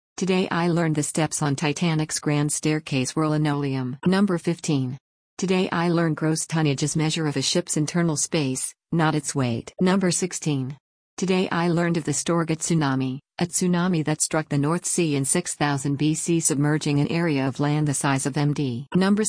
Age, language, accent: 50-69, English, American